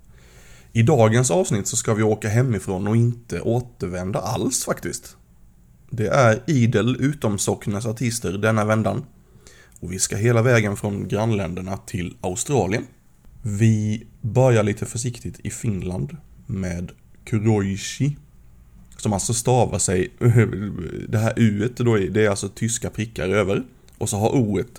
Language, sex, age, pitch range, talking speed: Swedish, male, 20-39, 95-115 Hz, 135 wpm